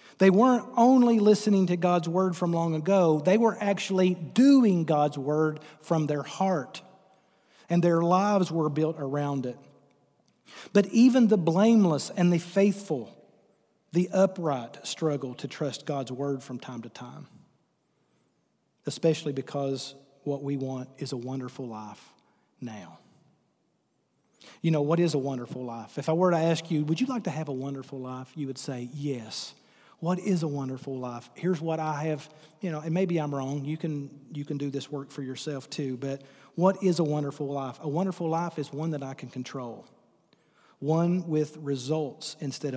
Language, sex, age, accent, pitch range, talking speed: English, male, 40-59, American, 135-175 Hz, 175 wpm